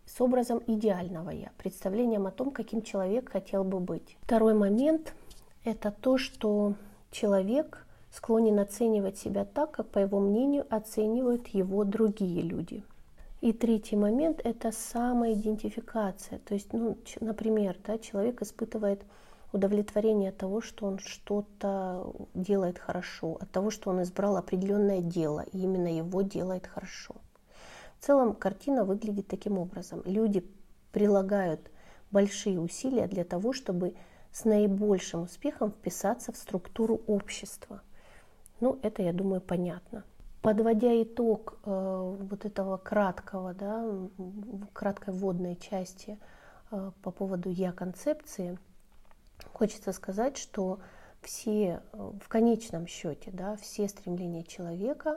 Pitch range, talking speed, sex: 190-225 Hz, 120 wpm, female